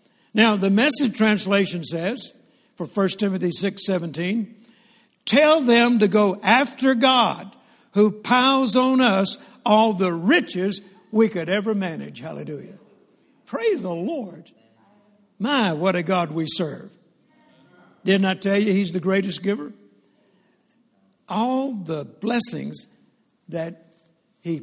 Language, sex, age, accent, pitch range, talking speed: English, male, 60-79, American, 185-230 Hz, 120 wpm